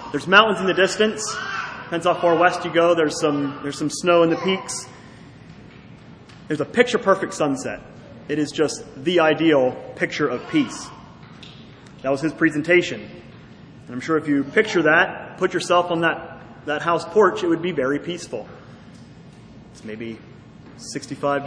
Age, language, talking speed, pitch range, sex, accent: 30-49, English, 160 wpm, 150-190 Hz, male, American